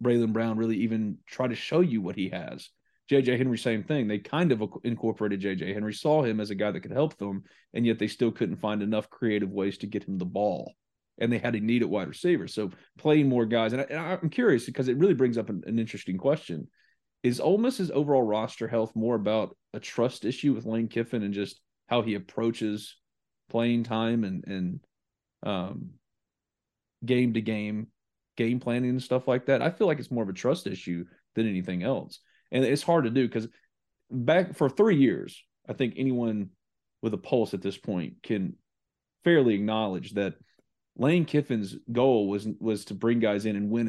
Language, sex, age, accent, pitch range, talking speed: English, male, 30-49, American, 105-125 Hz, 200 wpm